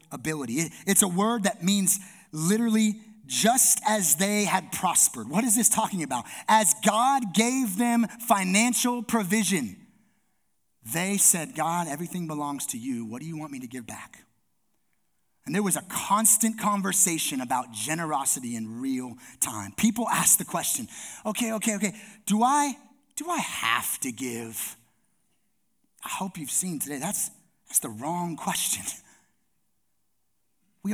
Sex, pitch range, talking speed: male, 145-210 Hz, 145 wpm